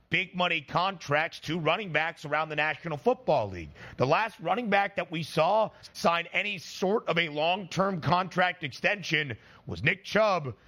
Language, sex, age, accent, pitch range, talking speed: English, male, 30-49, American, 150-185 Hz, 165 wpm